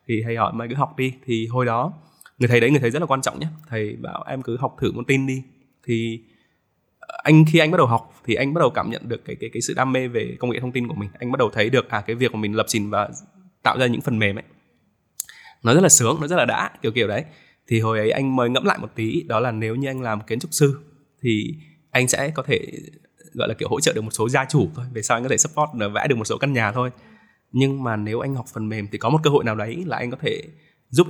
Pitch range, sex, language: 115-140 Hz, male, Vietnamese